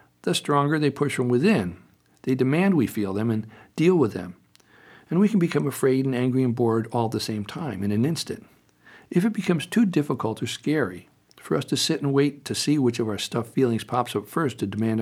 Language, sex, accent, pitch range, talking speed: English, male, American, 110-145 Hz, 230 wpm